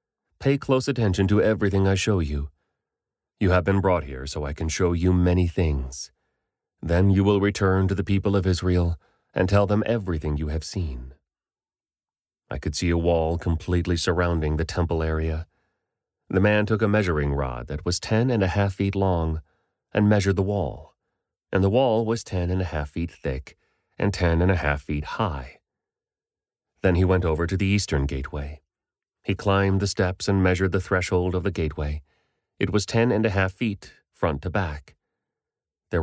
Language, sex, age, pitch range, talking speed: English, male, 30-49, 80-100 Hz, 185 wpm